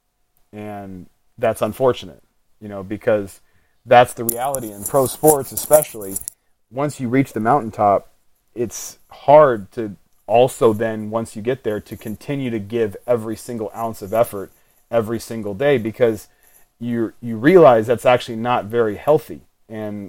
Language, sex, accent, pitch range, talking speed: English, male, American, 105-120 Hz, 145 wpm